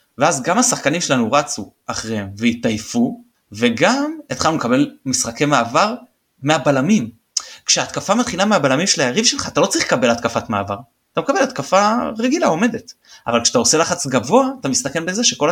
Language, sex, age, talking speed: Hebrew, male, 30-49, 150 wpm